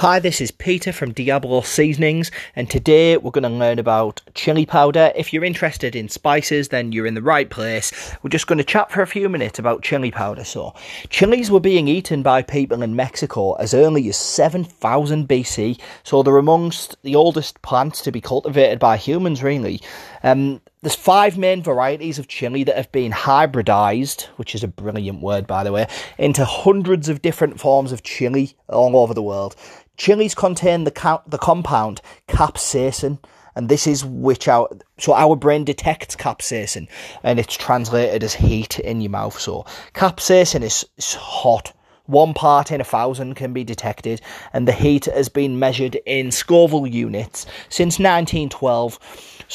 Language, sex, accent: English, male, British